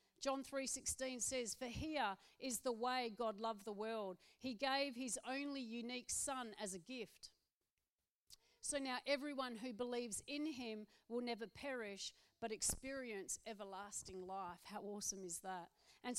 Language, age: English, 40-59